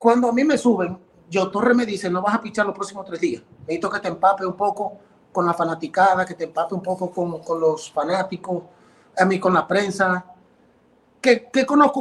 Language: English